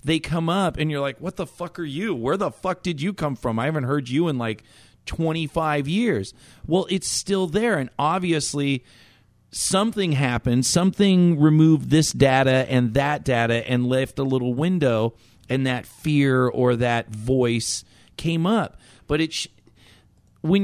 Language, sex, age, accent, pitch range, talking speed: English, male, 40-59, American, 120-160 Hz, 165 wpm